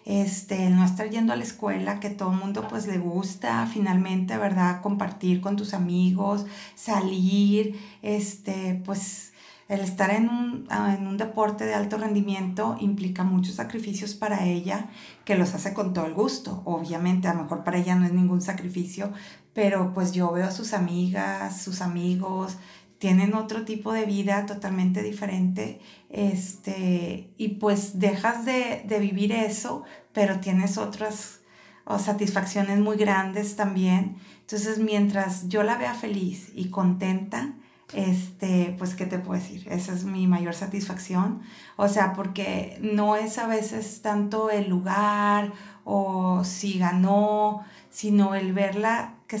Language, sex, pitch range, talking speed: Spanish, female, 185-210 Hz, 145 wpm